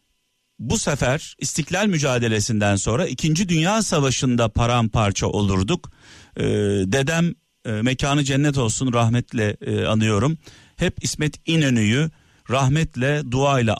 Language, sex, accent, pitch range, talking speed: Turkish, male, native, 115-150 Hz, 105 wpm